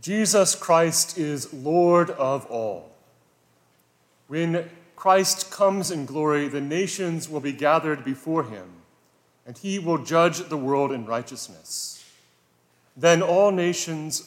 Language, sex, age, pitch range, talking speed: English, male, 30-49, 115-165 Hz, 120 wpm